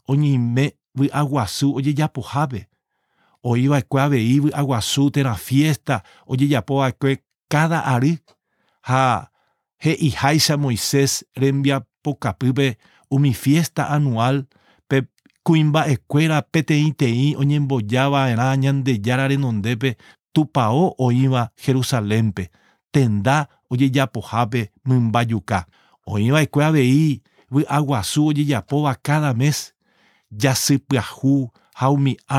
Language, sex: English, male